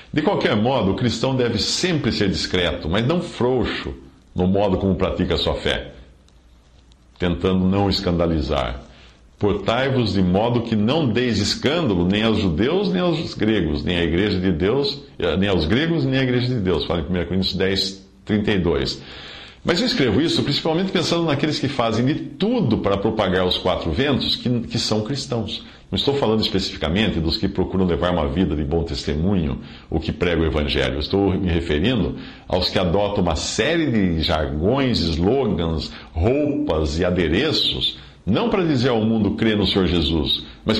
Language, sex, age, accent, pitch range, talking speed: Portuguese, male, 50-69, Brazilian, 80-115 Hz, 165 wpm